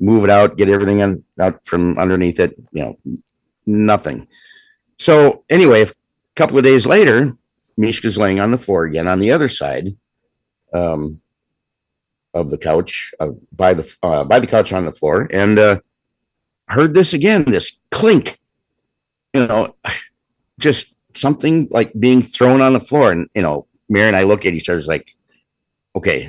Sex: male